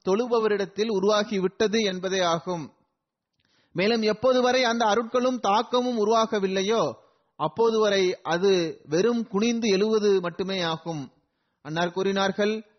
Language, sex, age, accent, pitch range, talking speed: Tamil, male, 30-49, native, 185-230 Hz, 80 wpm